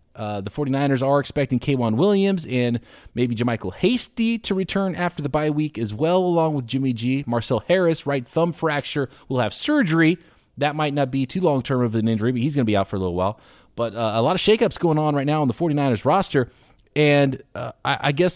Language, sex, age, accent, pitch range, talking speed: English, male, 30-49, American, 120-175 Hz, 230 wpm